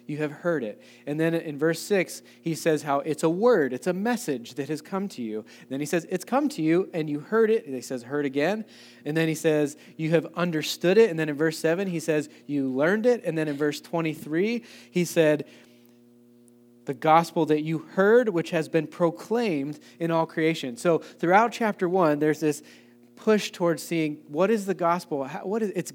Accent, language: American, English